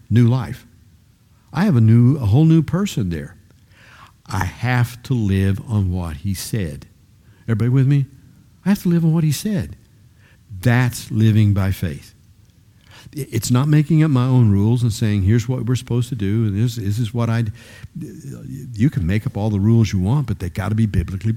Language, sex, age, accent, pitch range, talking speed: English, male, 60-79, American, 105-135 Hz, 200 wpm